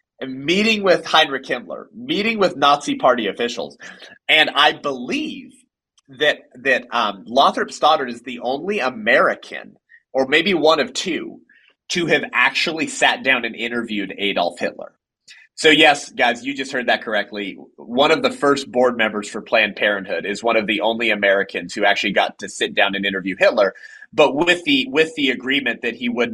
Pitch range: 110-165 Hz